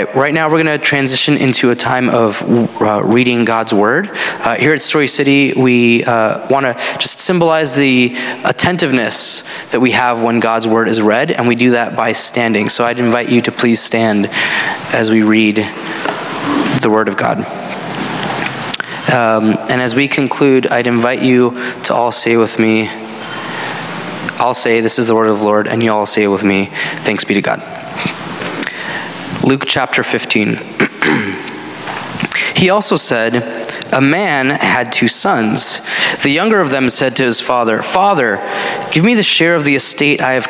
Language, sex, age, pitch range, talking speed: English, male, 20-39, 115-135 Hz, 170 wpm